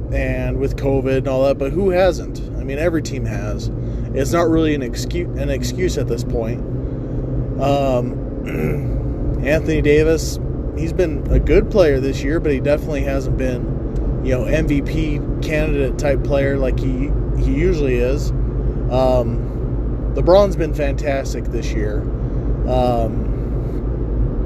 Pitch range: 125-150 Hz